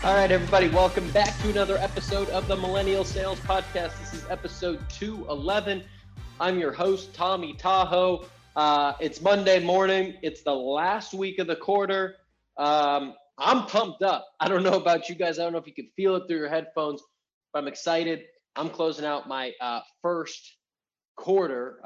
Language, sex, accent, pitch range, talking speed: English, male, American, 135-180 Hz, 175 wpm